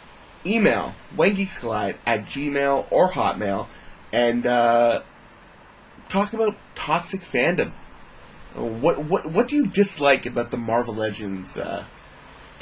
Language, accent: English, American